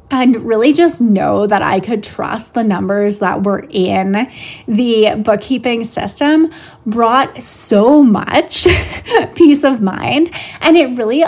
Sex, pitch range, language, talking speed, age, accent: female, 200-270 Hz, English, 135 wpm, 20-39, American